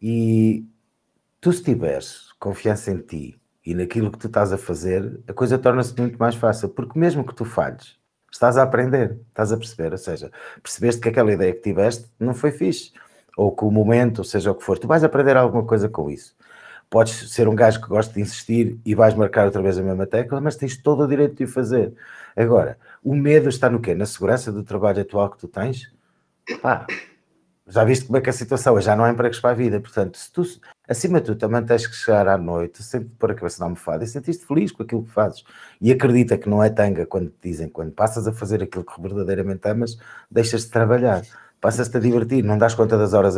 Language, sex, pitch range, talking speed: English, male, 105-125 Hz, 230 wpm